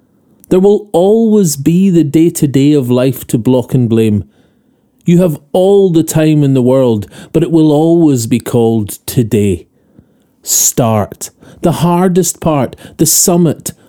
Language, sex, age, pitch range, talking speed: English, male, 30-49, 125-180 Hz, 145 wpm